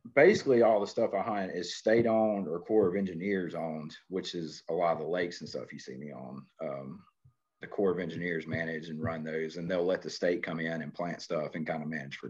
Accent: American